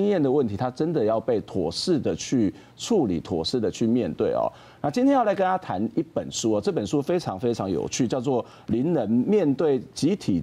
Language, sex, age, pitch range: Chinese, male, 40-59, 110-180 Hz